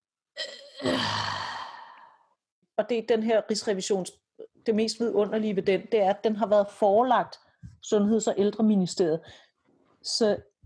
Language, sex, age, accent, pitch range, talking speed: Danish, female, 40-59, native, 185-240 Hz, 125 wpm